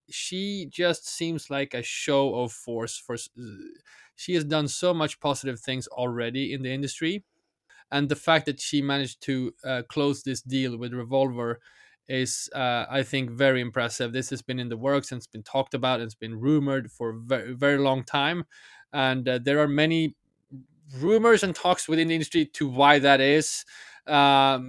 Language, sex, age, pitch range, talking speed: English, male, 20-39, 125-150 Hz, 185 wpm